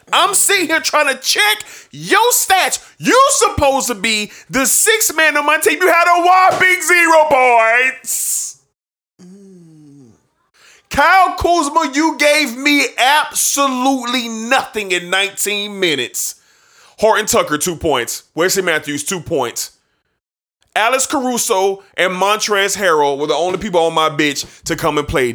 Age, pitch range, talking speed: 30-49, 165-265 Hz, 140 wpm